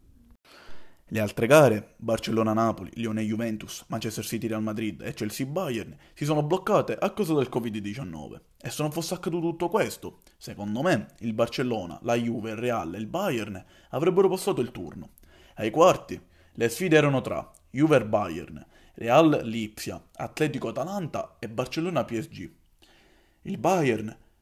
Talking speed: 130 wpm